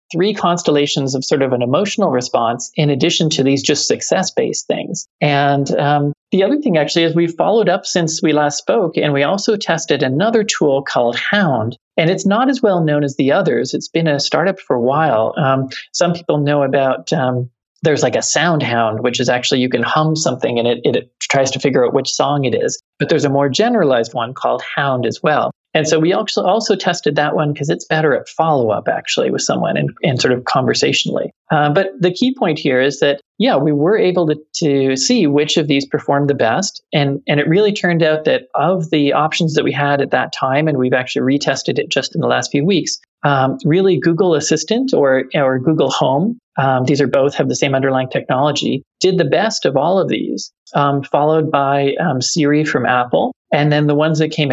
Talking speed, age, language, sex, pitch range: 220 wpm, 40-59, English, male, 135-175 Hz